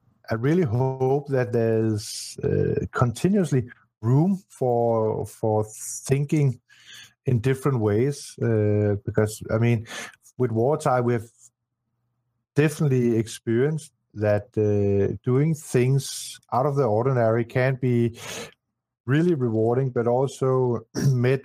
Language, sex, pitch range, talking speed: English, male, 110-130 Hz, 105 wpm